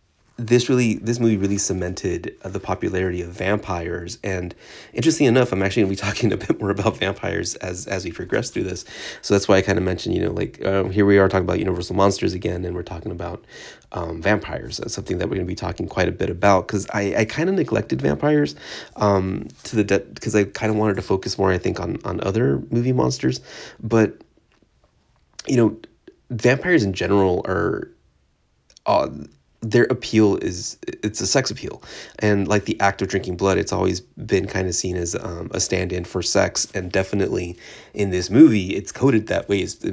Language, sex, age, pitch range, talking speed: English, male, 30-49, 90-110 Hz, 205 wpm